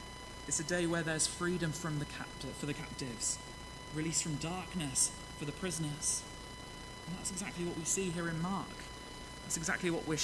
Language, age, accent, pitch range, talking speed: English, 20-39, British, 135-170 Hz, 180 wpm